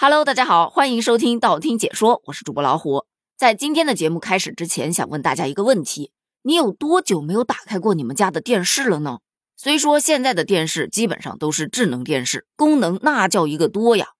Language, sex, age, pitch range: Chinese, female, 20-39, 160-250 Hz